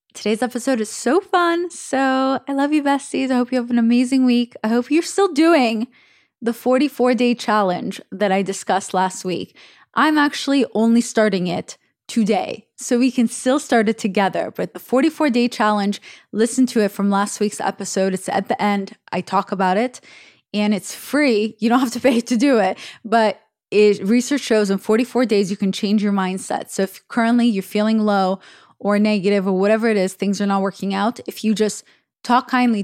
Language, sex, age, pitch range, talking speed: English, female, 20-39, 200-250 Hz, 195 wpm